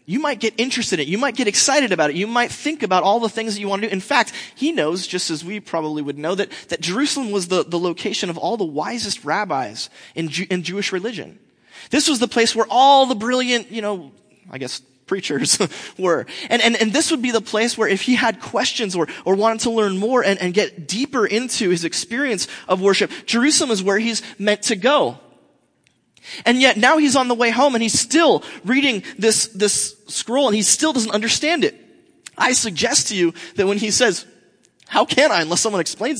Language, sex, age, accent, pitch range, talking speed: English, male, 30-49, American, 190-255 Hz, 225 wpm